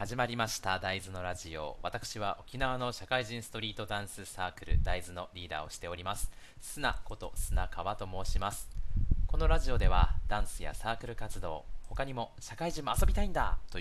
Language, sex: Japanese, male